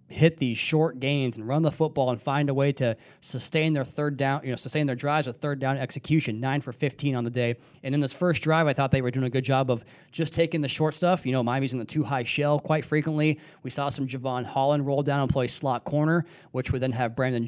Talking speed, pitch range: 265 wpm, 130-150 Hz